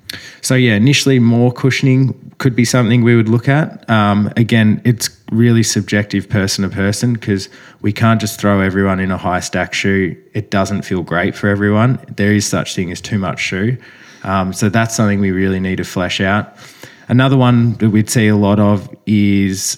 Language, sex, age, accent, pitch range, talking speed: English, male, 20-39, Australian, 95-110 Hz, 195 wpm